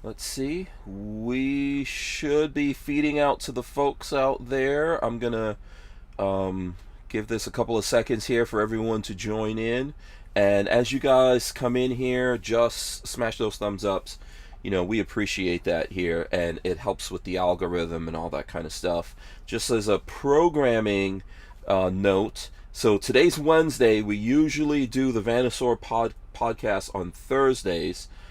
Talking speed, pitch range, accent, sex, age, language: 155 wpm, 95-125 Hz, American, male, 30-49, English